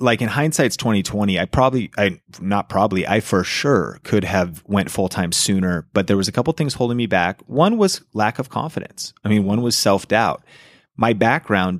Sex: male